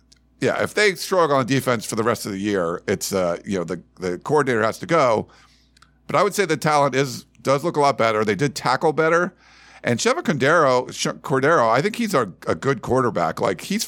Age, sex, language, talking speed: 50-69, male, English, 225 wpm